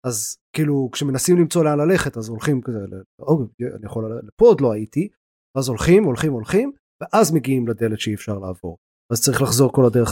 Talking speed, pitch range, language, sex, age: 185 wpm, 115-155 Hz, Hebrew, male, 30-49